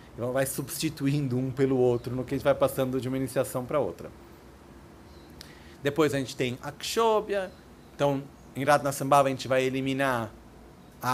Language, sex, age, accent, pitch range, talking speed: Italian, male, 40-59, Brazilian, 125-150 Hz, 170 wpm